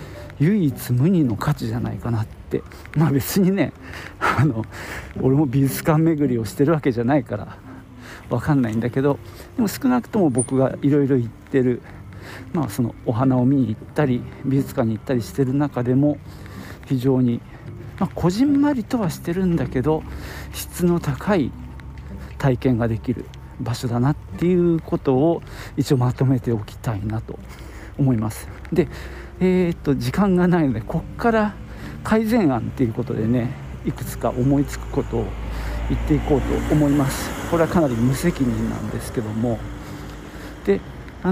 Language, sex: Japanese, male